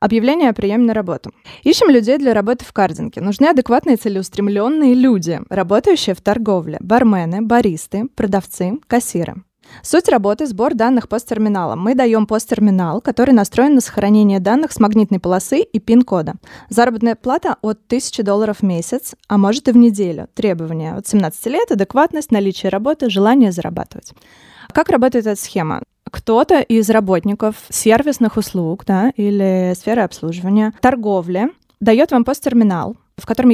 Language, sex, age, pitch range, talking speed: Russian, female, 20-39, 195-250 Hz, 145 wpm